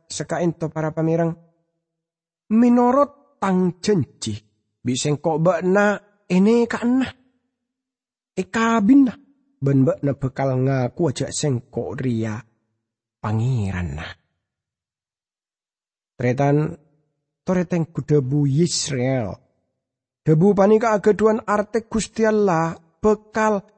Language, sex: English, male